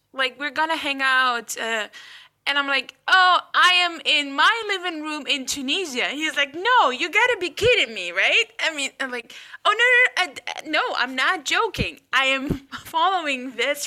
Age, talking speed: 10-29, 195 wpm